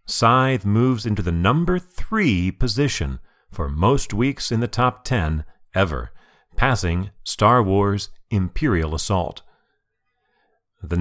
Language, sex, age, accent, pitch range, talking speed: English, male, 40-59, American, 85-115 Hz, 115 wpm